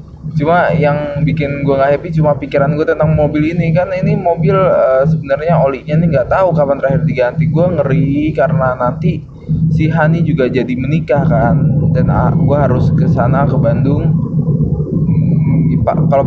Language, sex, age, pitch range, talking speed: Indonesian, male, 20-39, 135-155 Hz, 150 wpm